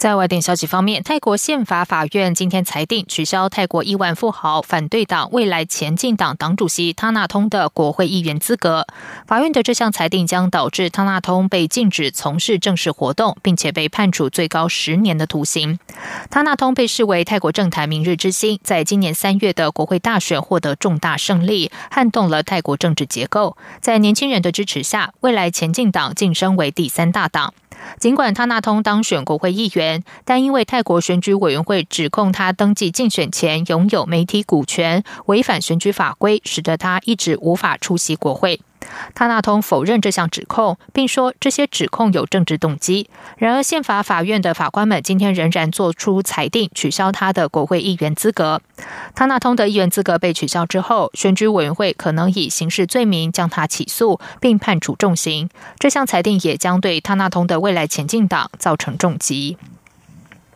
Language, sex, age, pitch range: German, female, 20-39, 165-210 Hz